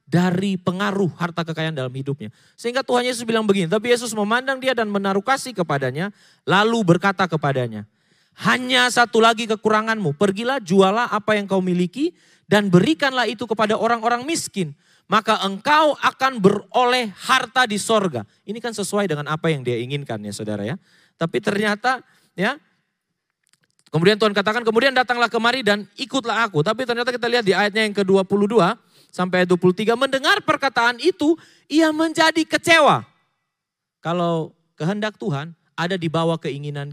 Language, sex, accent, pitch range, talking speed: Indonesian, male, native, 160-225 Hz, 150 wpm